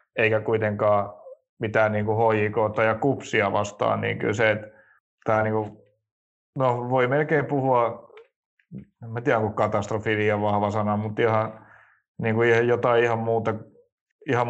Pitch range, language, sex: 105-120 Hz, Finnish, male